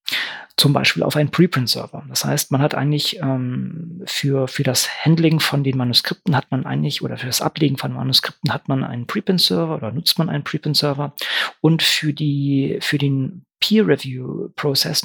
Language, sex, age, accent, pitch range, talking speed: German, male, 40-59, German, 135-155 Hz, 170 wpm